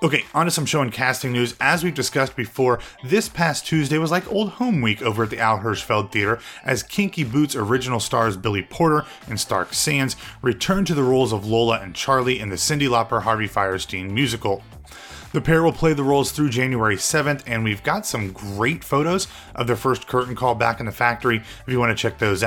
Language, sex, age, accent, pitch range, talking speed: English, male, 30-49, American, 110-140 Hz, 215 wpm